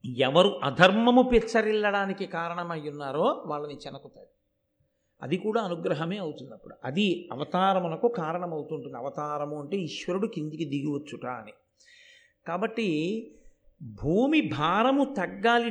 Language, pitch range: Telugu, 170-245 Hz